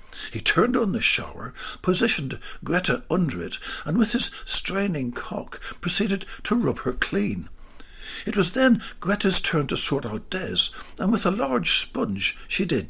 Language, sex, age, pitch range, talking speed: English, male, 60-79, 110-185 Hz, 165 wpm